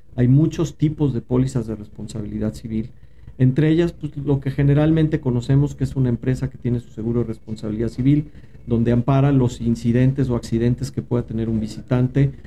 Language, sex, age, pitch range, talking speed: Spanish, male, 40-59, 115-135 Hz, 175 wpm